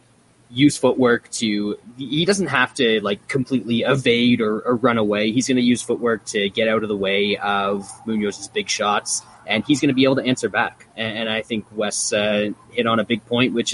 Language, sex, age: English, male, 20-39